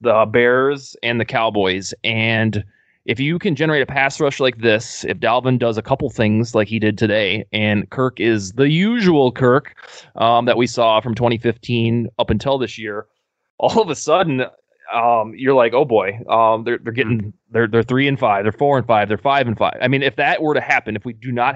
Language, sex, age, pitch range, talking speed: English, male, 20-39, 110-140 Hz, 215 wpm